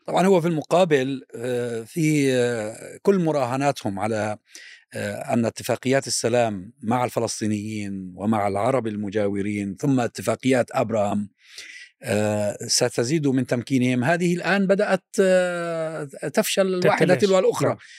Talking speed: 95 wpm